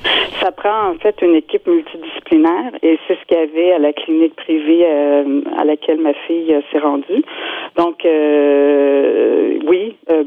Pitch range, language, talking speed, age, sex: 155-215 Hz, French, 170 wpm, 50-69, female